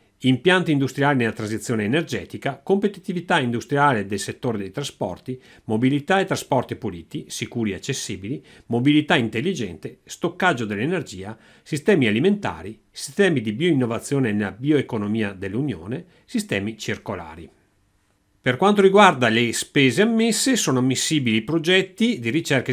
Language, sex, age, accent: Italian, male, 40-59, native